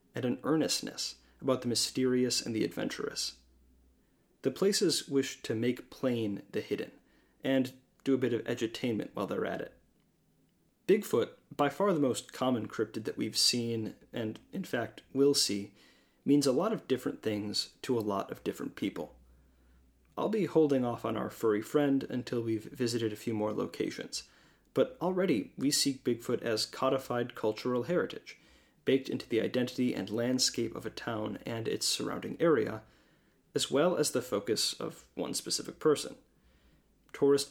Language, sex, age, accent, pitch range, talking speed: English, male, 30-49, American, 110-135 Hz, 160 wpm